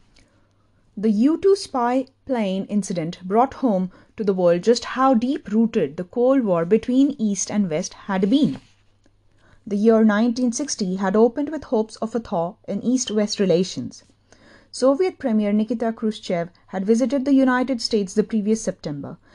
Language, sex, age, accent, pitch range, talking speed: English, female, 30-49, Indian, 185-240 Hz, 145 wpm